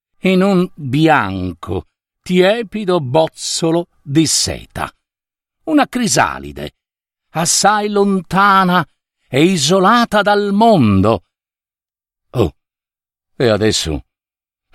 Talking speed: 75 wpm